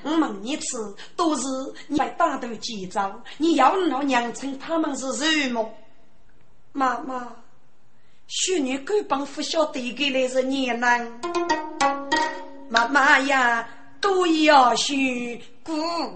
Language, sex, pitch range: Chinese, female, 240-310 Hz